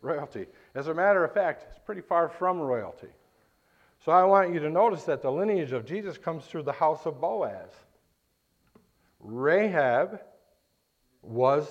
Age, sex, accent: 50-69, male, American